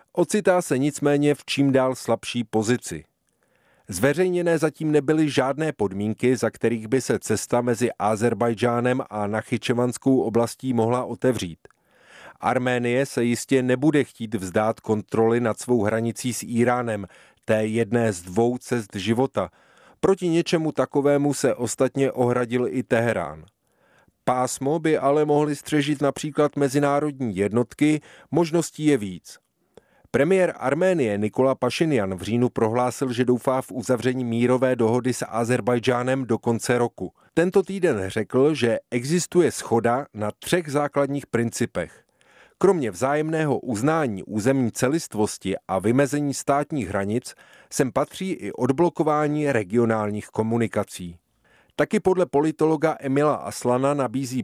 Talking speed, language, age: 120 wpm, Czech, 30-49